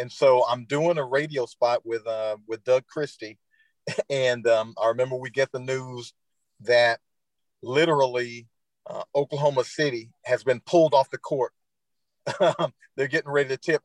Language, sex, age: English, male, 40-59